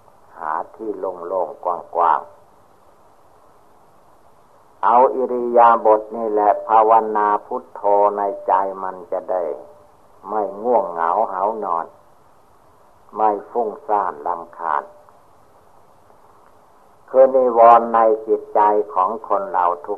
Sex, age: male, 60-79